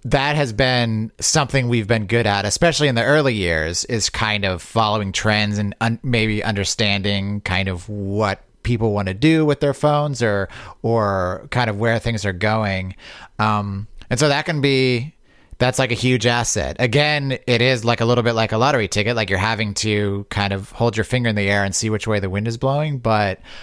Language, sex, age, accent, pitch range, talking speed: English, male, 30-49, American, 95-125 Hz, 210 wpm